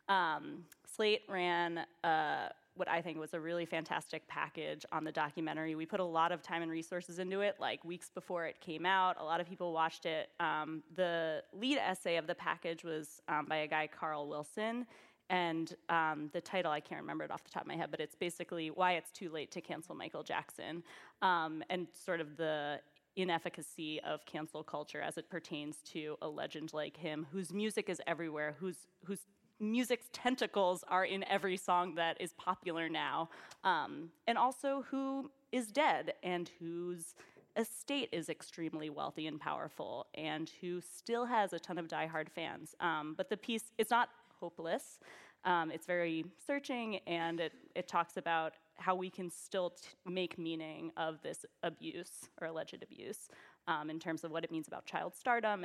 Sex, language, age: female, English, 20-39